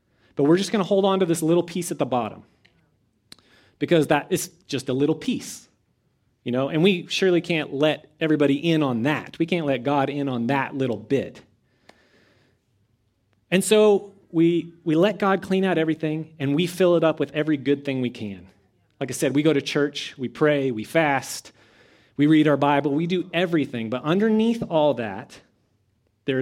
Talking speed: 190 wpm